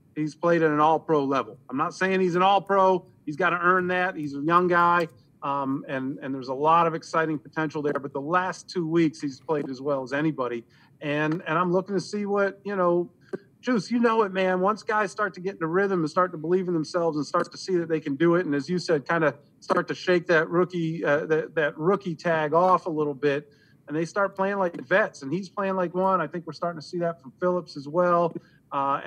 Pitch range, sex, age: 150-180 Hz, male, 40-59